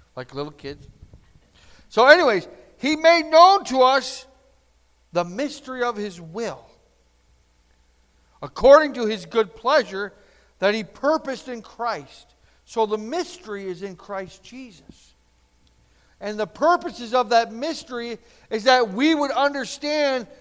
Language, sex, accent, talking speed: English, male, American, 125 wpm